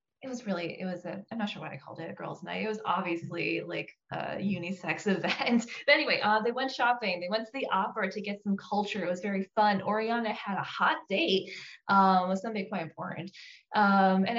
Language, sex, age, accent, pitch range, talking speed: English, female, 20-39, American, 185-235 Hz, 225 wpm